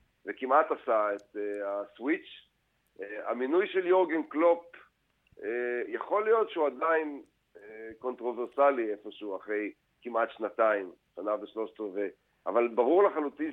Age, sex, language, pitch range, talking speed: 50-69, male, Hebrew, 115-150 Hz, 120 wpm